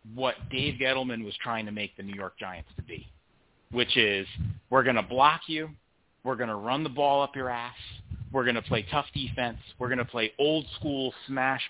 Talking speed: 215 wpm